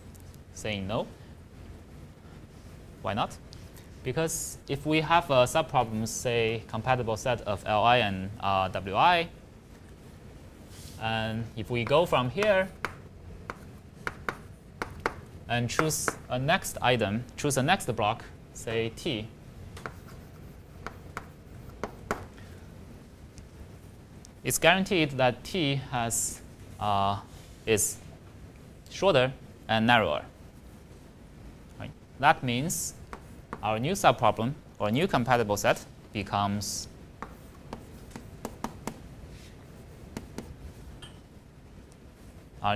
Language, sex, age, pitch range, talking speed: English, male, 20-39, 95-125 Hz, 80 wpm